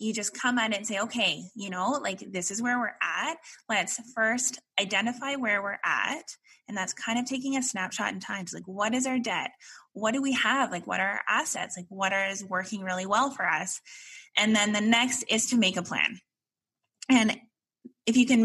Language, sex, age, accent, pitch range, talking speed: English, female, 20-39, American, 180-240 Hz, 220 wpm